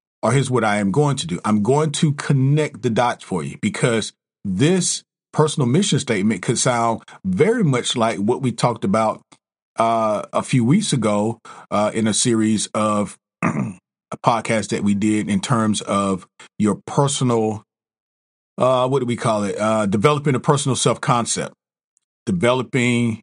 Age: 40-59